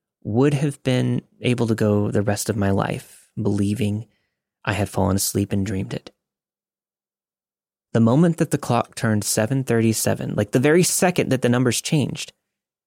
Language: English